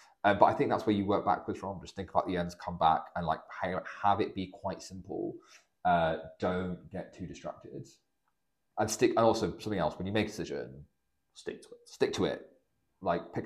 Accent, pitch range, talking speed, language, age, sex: British, 85-110 Hz, 215 wpm, English, 30-49, male